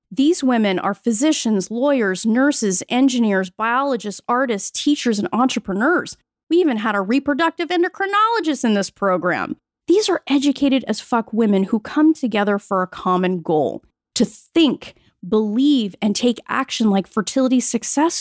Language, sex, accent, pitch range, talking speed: English, female, American, 205-290 Hz, 140 wpm